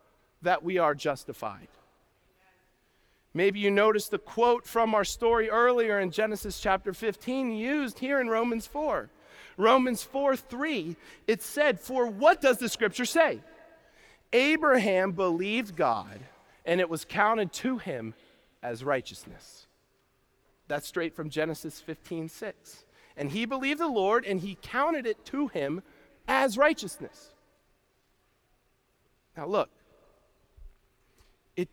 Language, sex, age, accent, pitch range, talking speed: English, male, 40-59, American, 195-270 Hz, 125 wpm